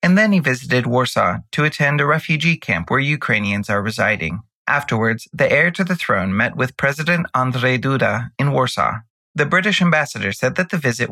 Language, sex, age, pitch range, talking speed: English, male, 30-49, 115-155 Hz, 185 wpm